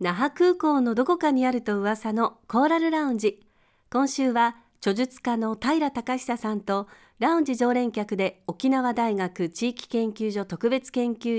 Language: Japanese